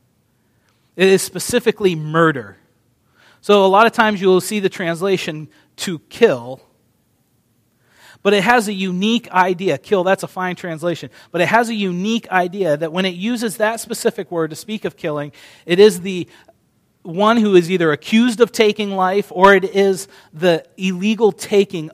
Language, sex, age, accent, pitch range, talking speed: English, male, 40-59, American, 150-195 Hz, 165 wpm